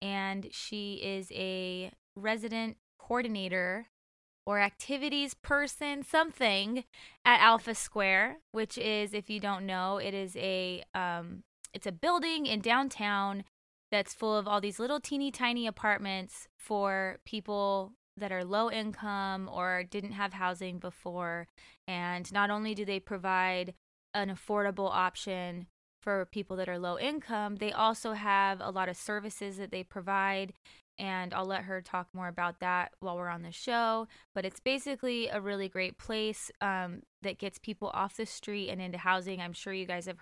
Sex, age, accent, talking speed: female, 20-39, American, 160 wpm